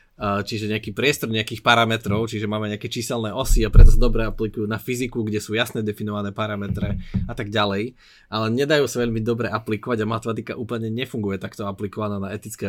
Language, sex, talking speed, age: Slovak, male, 185 wpm, 20-39